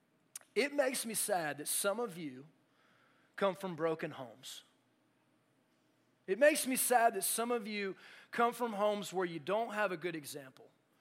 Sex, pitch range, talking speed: male, 175-230 Hz, 165 wpm